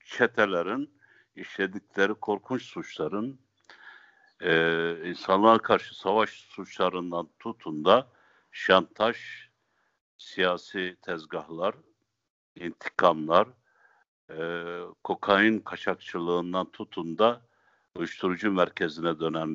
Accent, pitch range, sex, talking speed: native, 85-100 Hz, male, 70 wpm